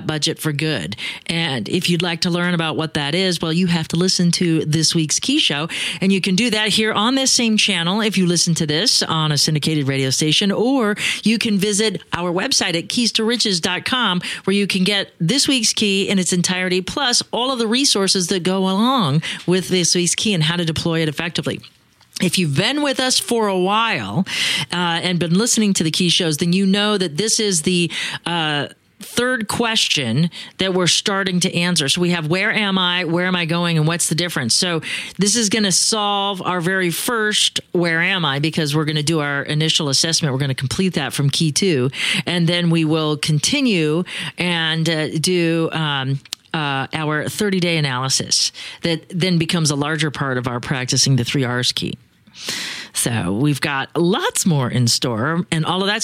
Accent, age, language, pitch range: American, 40-59, English, 160-195 Hz